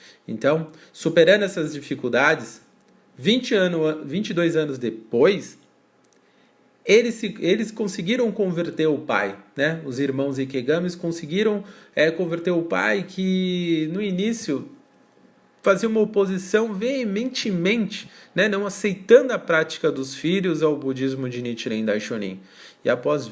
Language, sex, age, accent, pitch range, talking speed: Portuguese, male, 40-59, Brazilian, 145-195 Hz, 115 wpm